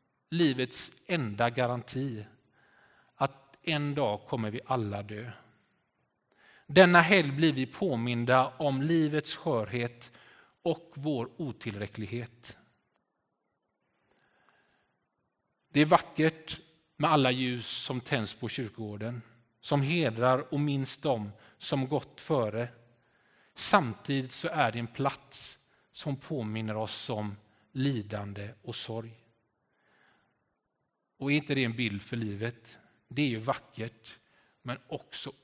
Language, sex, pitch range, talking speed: Swedish, male, 115-145 Hz, 110 wpm